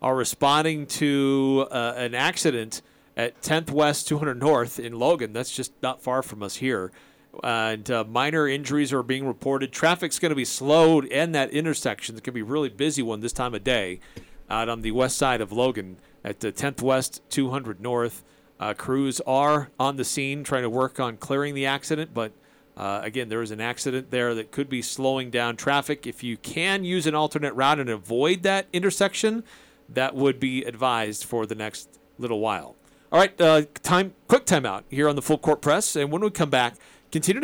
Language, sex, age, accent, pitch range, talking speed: English, male, 40-59, American, 120-155 Hz, 200 wpm